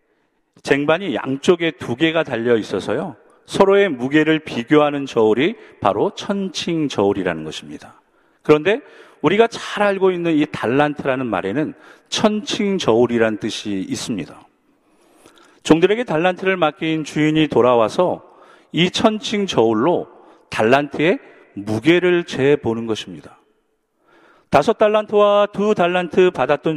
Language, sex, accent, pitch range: Korean, male, native, 135-195 Hz